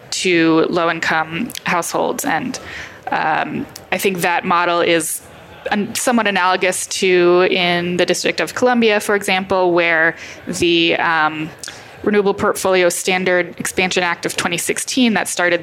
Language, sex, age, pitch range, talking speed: English, female, 20-39, 170-195 Hz, 125 wpm